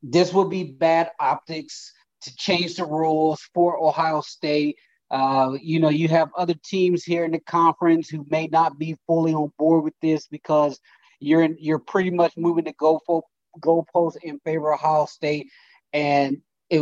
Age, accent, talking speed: 30-49, American, 175 wpm